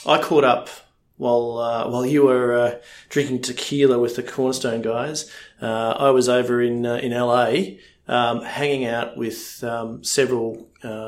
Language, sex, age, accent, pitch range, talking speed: English, male, 40-59, Australian, 110-125 Hz, 155 wpm